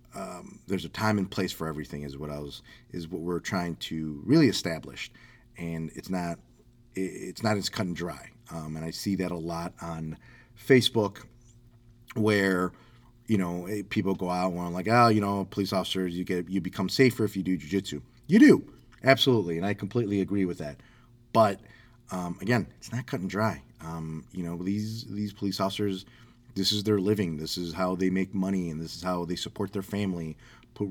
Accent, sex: American, male